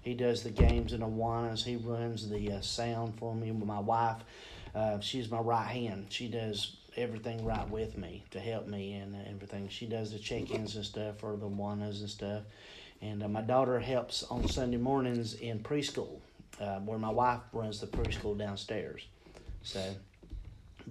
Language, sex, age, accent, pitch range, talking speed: English, male, 40-59, American, 105-130 Hz, 175 wpm